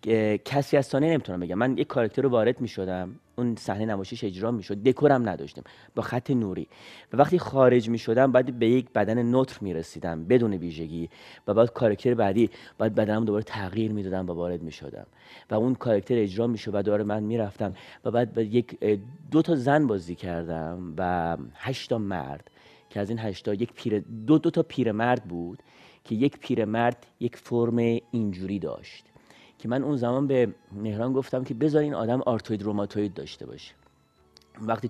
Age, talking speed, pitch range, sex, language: 30-49, 180 wpm, 95-120 Hz, male, Persian